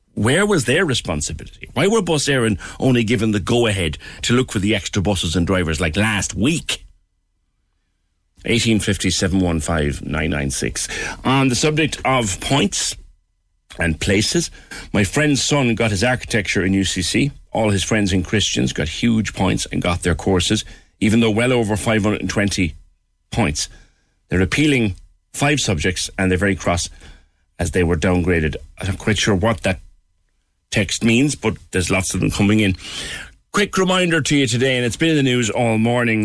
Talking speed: 170 wpm